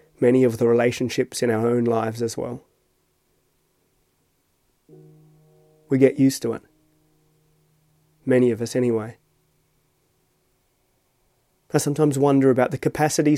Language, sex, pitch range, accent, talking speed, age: English, male, 120-140 Hz, Australian, 110 wpm, 30-49